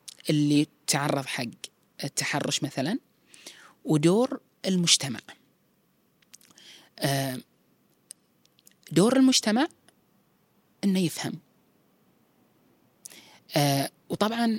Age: 30-49